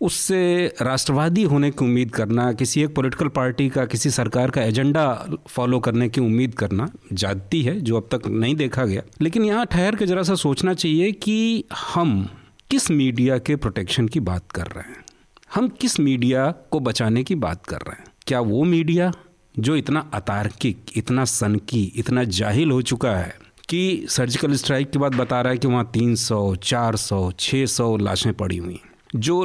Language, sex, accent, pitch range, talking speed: Hindi, male, native, 110-150 Hz, 175 wpm